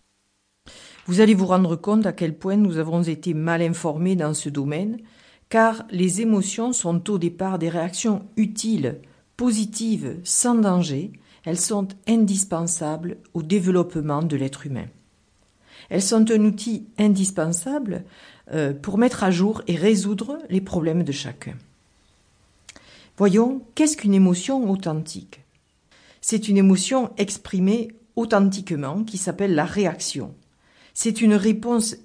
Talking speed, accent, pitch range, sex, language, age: 125 wpm, French, 155-210 Hz, female, French, 60-79